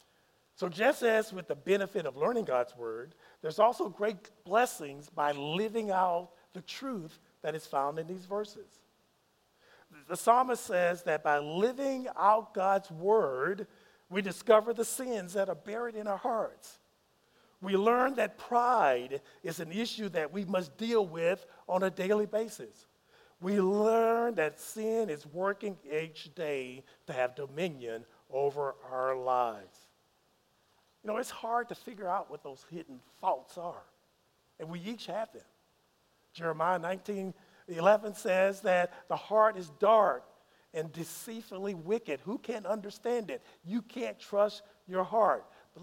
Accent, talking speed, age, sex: American, 145 wpm, 50-69, male